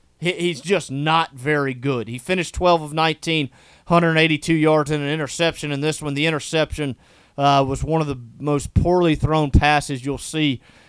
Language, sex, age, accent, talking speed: English, male, 40-59, American, 170 wpm